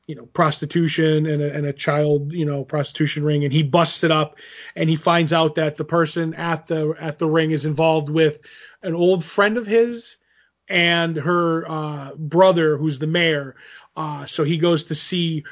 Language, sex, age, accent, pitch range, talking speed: English, male, 20-39, American, 155-175 Hz, 195 wpm